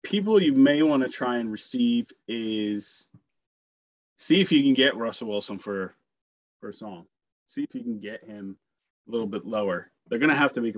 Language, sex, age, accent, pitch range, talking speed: English, male, 20-39, American, 100-125 Hz, 200 wpm